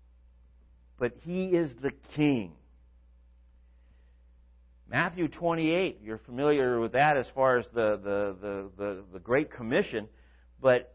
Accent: American